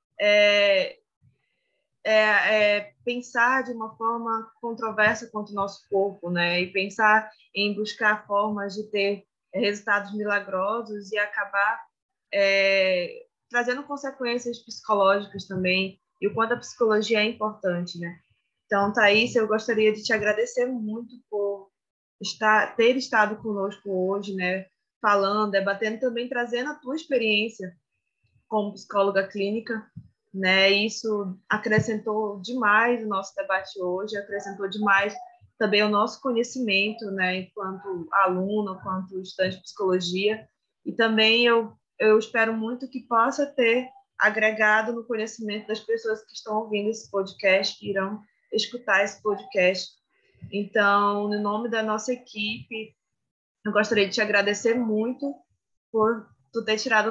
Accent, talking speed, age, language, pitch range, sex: Brazilian, 130 wpm, 20-39, Portuguese, 195-225 Hz, female